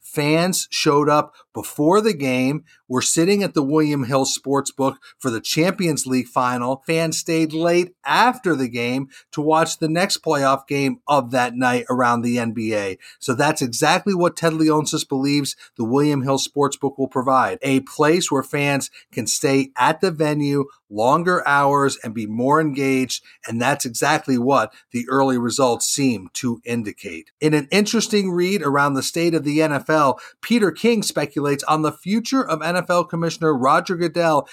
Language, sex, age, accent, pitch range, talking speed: English, male, 40-59, American, 135-170 Hz, 165 wpm